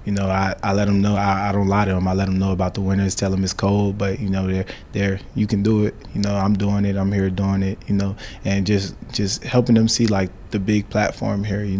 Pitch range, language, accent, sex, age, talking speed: 95-105 Hz, English, American, male, 20-39, 285 wpm